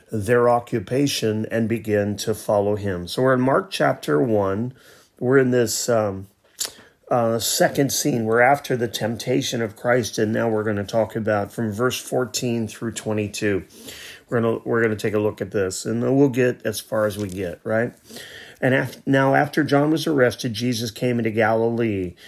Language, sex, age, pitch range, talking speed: English, male, 30-49, 105-125 Hz, 190 wpm